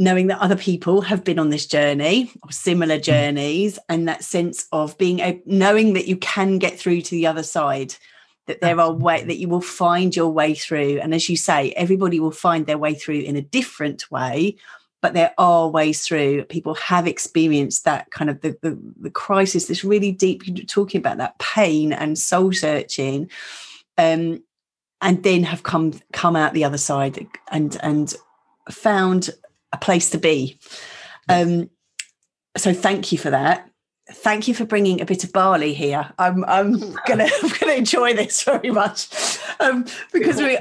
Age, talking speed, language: 30-49, 180 wpm, English